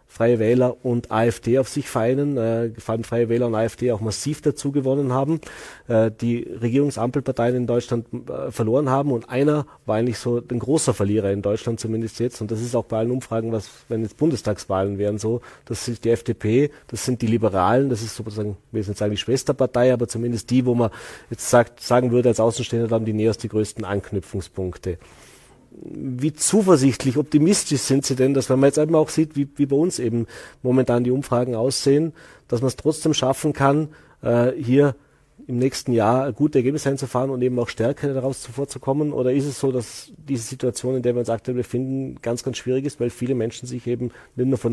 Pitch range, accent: 115-135 Hz, German